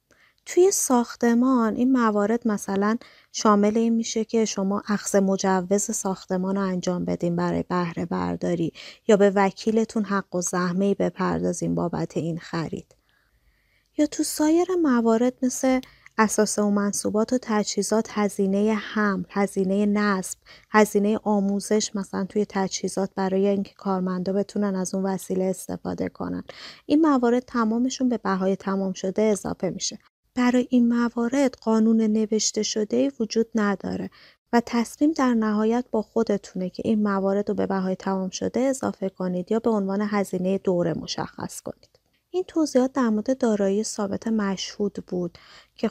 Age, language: 30-49, Persian